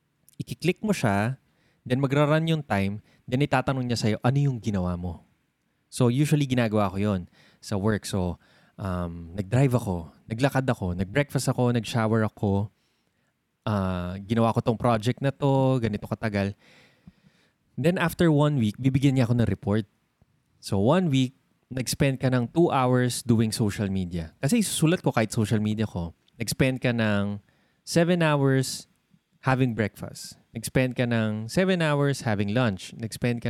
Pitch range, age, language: 110-155 Hz, 20-39, Filipino